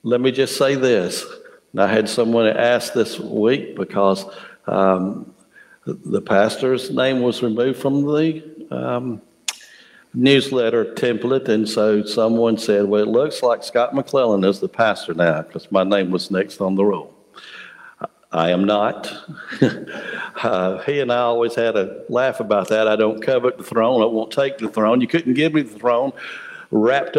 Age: 60-79